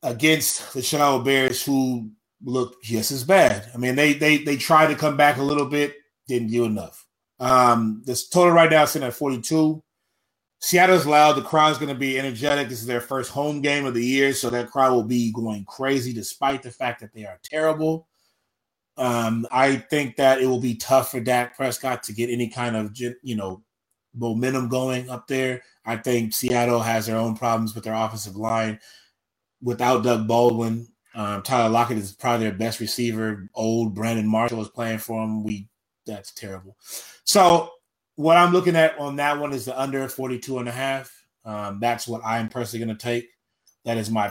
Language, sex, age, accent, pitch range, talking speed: English, male, 20-39, American, 110-135 Hz, 200 wpm